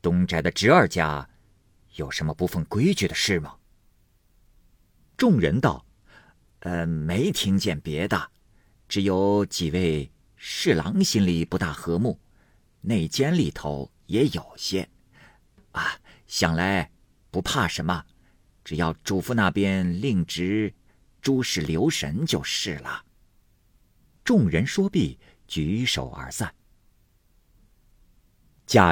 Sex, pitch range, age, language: male, 80-105 Hz, 50-69, Chinese